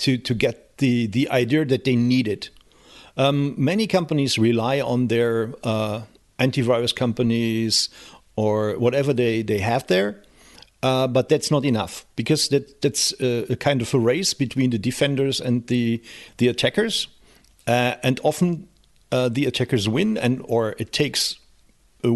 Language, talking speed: English, 155 wpm